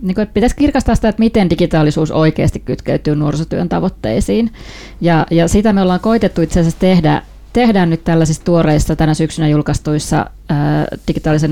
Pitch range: 150-180 Hz